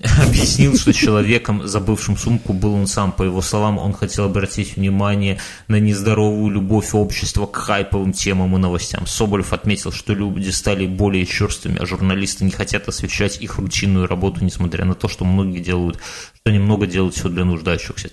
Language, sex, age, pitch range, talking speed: Russian, male, 30-49, 95-105 Hz, 170 wpm